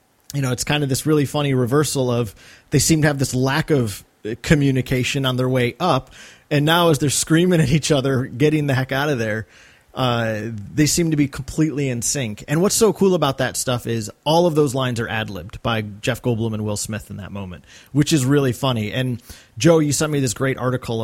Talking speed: 230 wpm